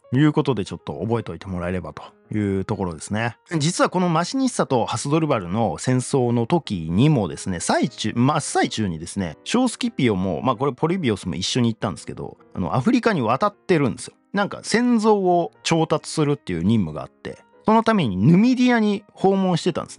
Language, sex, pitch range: Japanese, male, 110-180 Hz